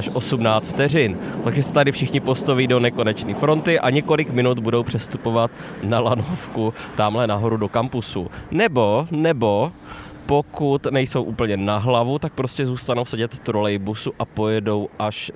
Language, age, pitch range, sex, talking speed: Czech, 20-39, 110-130 Hz, male, 140 wpm